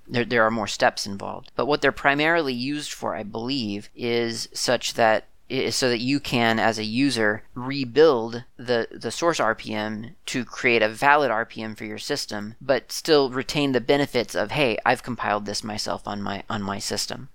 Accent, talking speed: American, 190 wpm